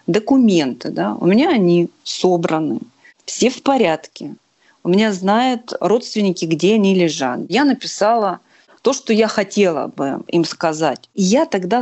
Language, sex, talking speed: Russian, female, 140 wpm